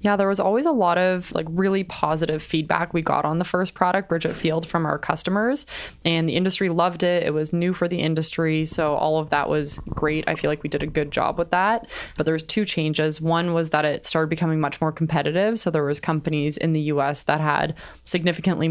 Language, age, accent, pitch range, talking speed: English, 20-39, American, 150-170 Hz, 235 wpm